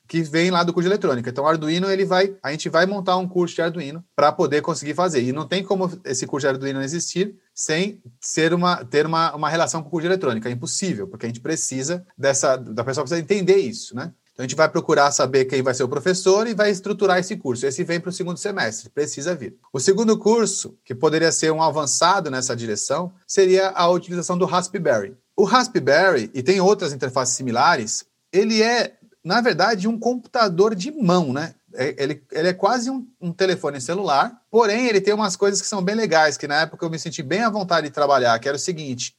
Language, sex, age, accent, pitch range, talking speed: Portuguese, male, 30-49, Brazilian, 140-195 Hz, 220 wpm